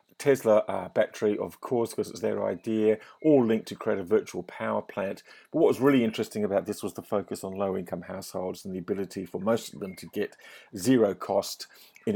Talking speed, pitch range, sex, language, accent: 205 wpm, 100-155 Hz, male, English, British